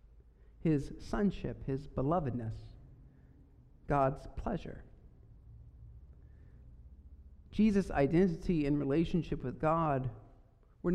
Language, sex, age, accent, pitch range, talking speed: English, male, 50-69, American, 115-175 Hz, 70 wpm